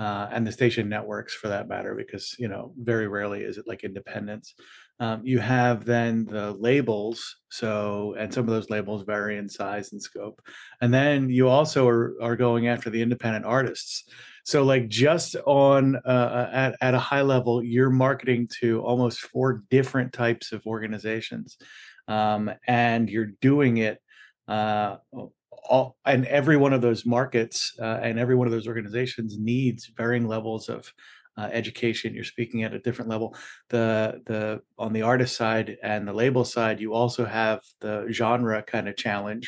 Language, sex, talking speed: English, male, 170 wpm